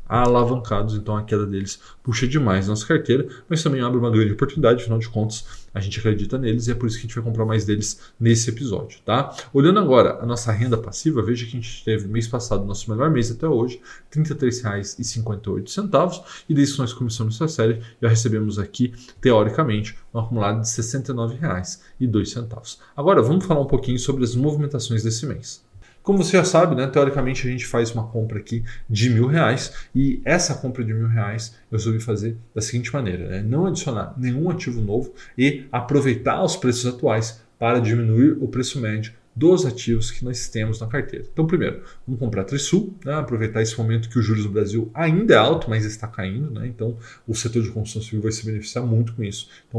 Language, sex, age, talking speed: Portuguese, male, 20-39, 200 wpm